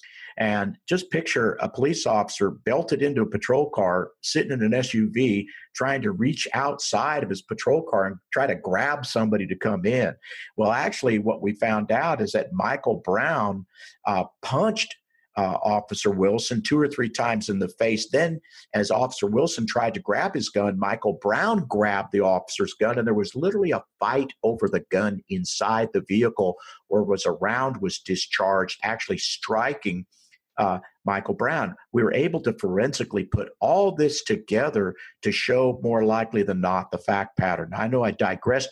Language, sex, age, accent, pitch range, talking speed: English, male, 50-69, American, 105-145 Hz, 175 wpm